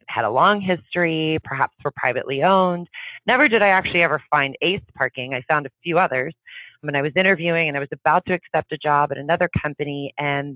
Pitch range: 135-165 Hz